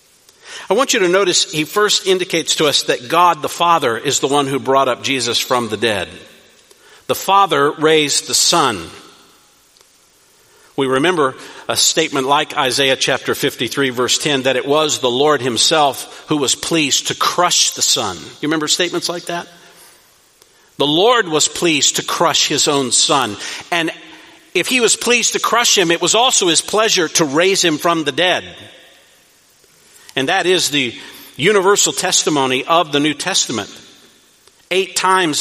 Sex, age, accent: male, 50-69, American